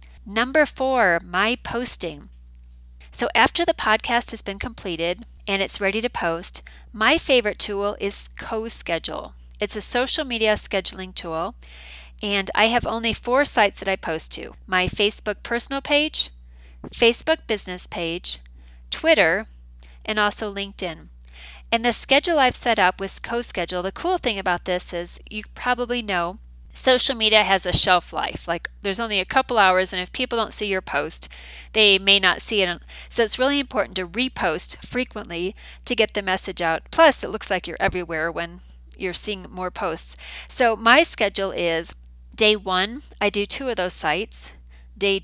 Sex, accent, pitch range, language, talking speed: female, American, 170-225 Hz, English, 165 wpm